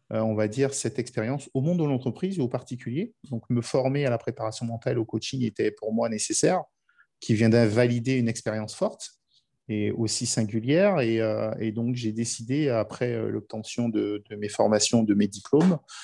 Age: 50-69